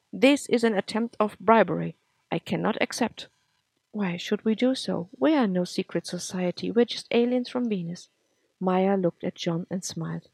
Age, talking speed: 50-69, 180 wpm